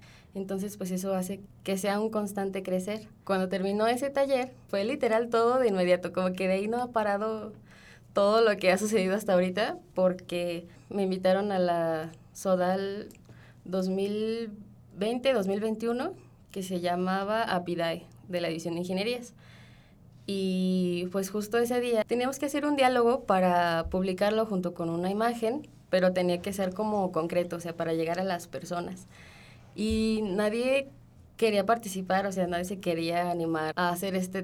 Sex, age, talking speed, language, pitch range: female, 20-39, 155 wpm, Spanish, 185-230 Hz